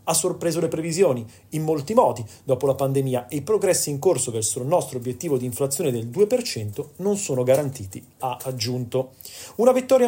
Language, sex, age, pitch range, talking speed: Italian, male, 30-49, 130-190 Hz, 180 wpm